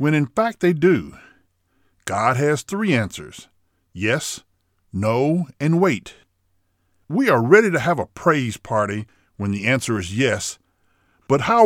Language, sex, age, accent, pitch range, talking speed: English, male, 50-69, American, 100-150 Hz, 145 wpm